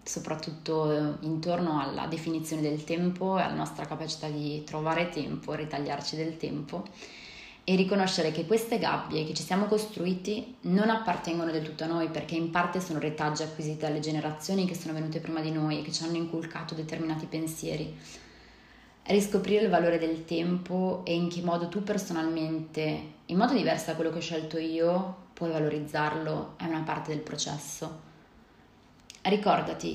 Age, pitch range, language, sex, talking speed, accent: 20-39, 155-175 Hz, Italian, female, 160 wpm, native